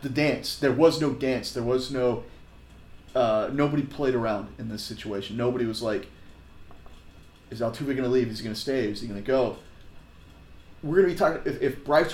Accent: American